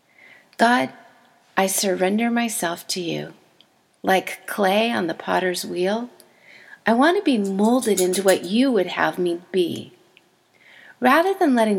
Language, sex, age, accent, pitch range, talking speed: English, female, 40-59, American, 190-265 Hz, 135 wpm